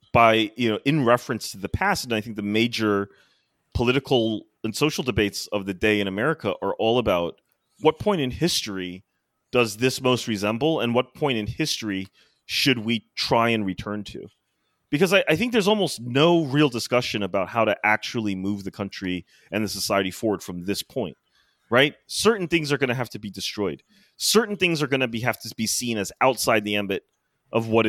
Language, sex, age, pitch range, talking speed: English, male, 30-49, 105-130 Hz, 195 wpm